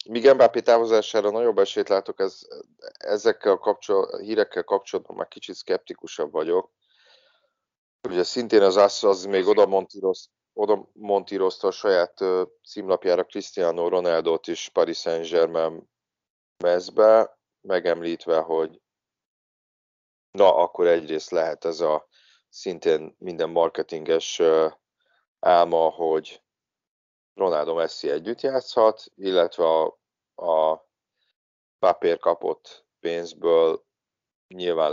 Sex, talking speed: male, 100 wpm